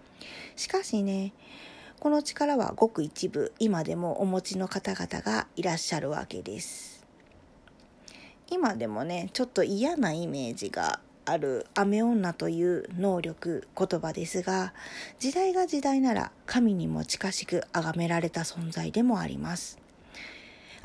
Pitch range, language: 175-250 Hz, Japanese